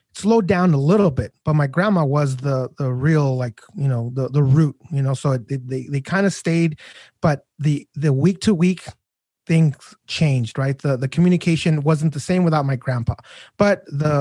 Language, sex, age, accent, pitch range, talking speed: English, male, 30-49, American, 135-170 Hz, 200 wpm